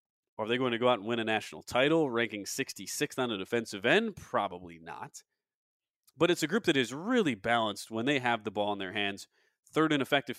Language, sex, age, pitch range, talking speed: English, male, 30-49, 110-150 Hz, 220 wpm